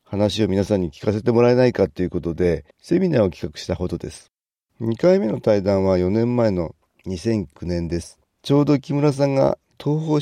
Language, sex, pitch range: Japanese, male, 90-130 Hz